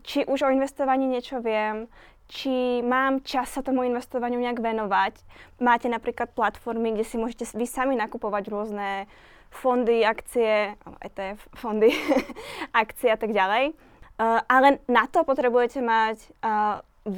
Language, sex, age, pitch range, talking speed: Slovak, female, 10-29, 210-245 Hz, 140 wpm